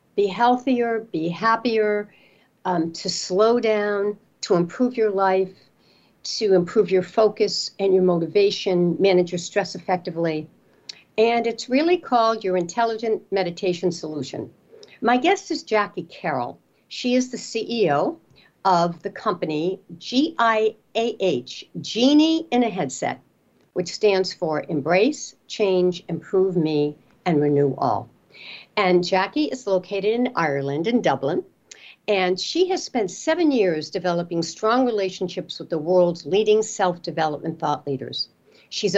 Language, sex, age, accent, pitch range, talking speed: English, female, 60-79, American, 175-220 Hz, 130 wpm